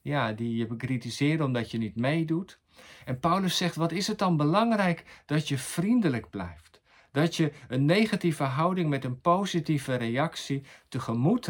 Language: Dutch